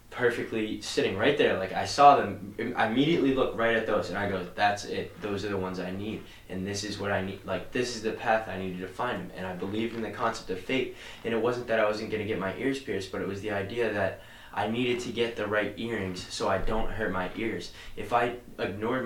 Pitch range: 100-120 Hz